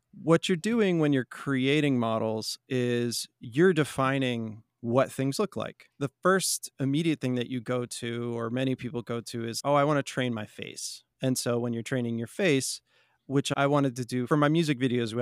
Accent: American